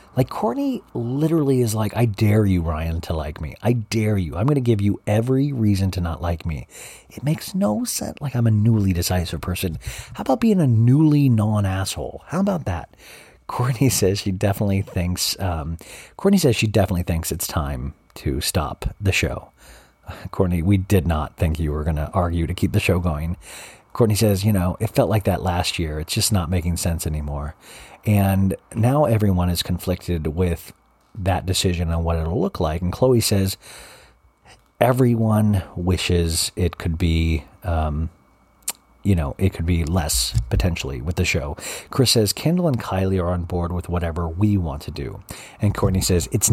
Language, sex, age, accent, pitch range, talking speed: English, male, 40-59, American, 85-105 Hz, 185 wpm